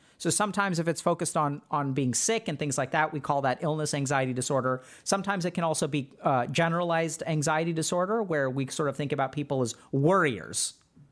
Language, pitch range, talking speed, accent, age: English, 145-180 Hz, 200 wpm, American, 40-59